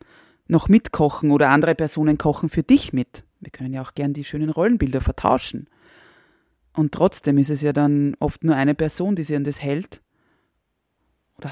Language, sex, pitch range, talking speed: German, female, 140-165 Hz, 175 wpm